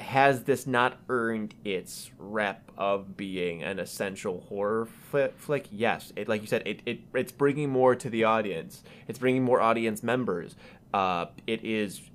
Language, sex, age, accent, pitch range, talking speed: English, male, 20-39, American, 115-175 Hz, 170 wpm